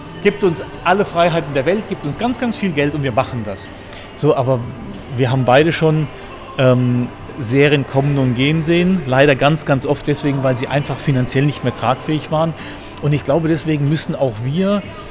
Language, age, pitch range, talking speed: German, 40-59, 125-160 Hz, 190 wpm